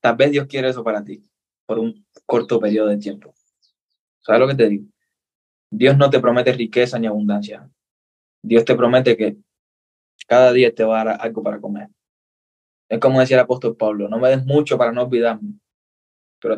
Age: 10-29